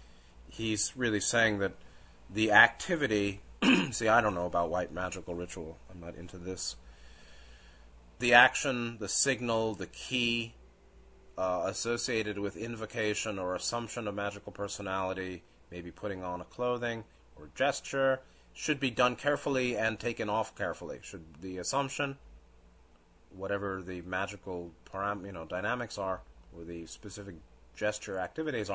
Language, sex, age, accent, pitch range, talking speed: English, male, 30-49, American, 85-115 Hz, 135 wpm